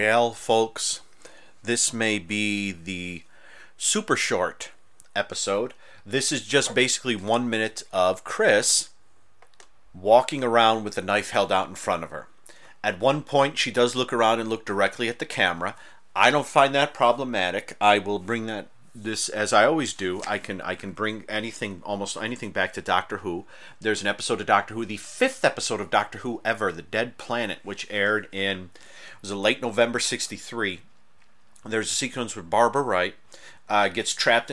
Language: English